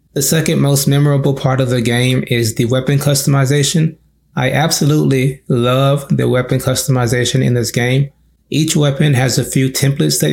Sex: male